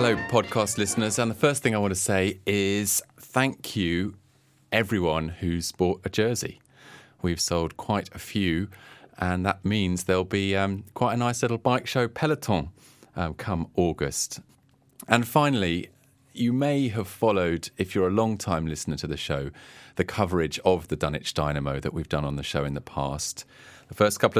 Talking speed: 180 wpm